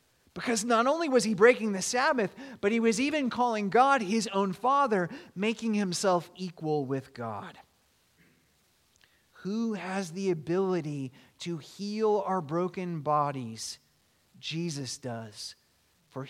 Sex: male